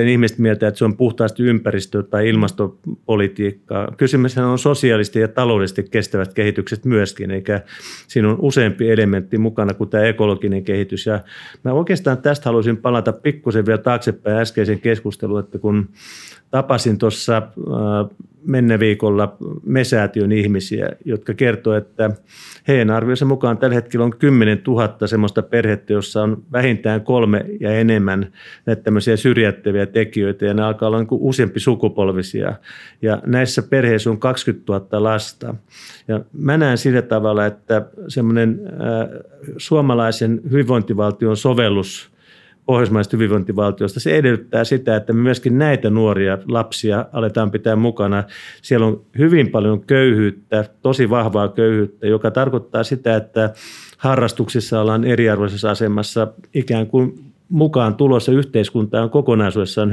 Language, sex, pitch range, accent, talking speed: Finnish, male, 105-125 Hz, native, 130 wpm